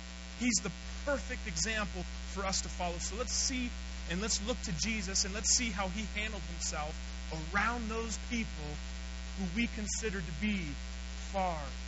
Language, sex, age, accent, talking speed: English, male, 30-49, American, 160 wpm